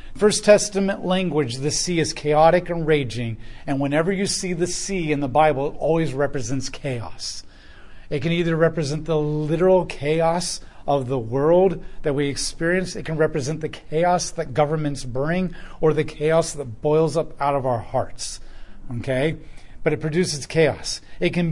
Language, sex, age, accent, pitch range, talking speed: English, male, 40-59, American, 125-160 Hz, 165 wpm